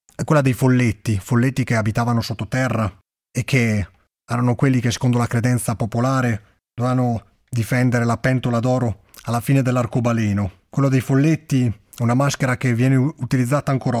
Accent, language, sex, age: native, Italian, male, 30-49